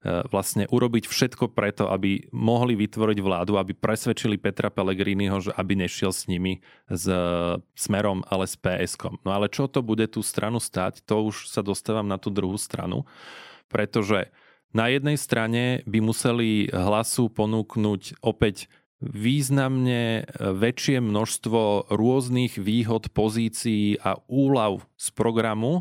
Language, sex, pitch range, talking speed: Slovak, male, 100-115 Hz, 135 wpm